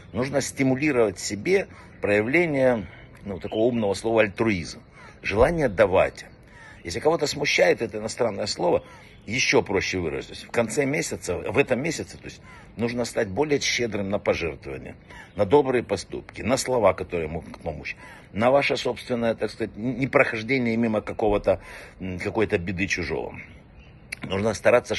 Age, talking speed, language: 60-79, 130 wpm, Russian